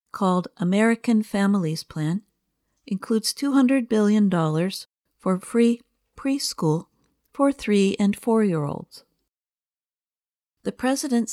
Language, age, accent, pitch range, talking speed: English, 50-69, American, 175-235 Hz, 85 wpm